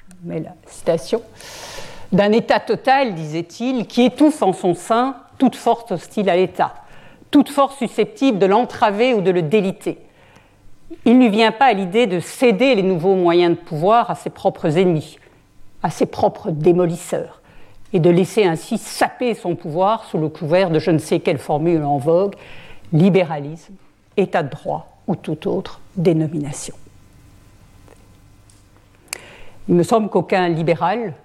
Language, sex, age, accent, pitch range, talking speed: French, female, 50-69, French, 165-225 Hz, 155 wpm